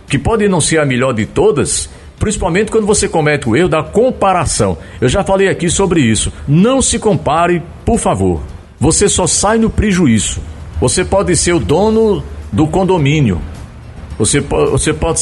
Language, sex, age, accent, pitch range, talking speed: Portuguese, male, 50-69, Brazilian, 105-175 Hz, 160 wpm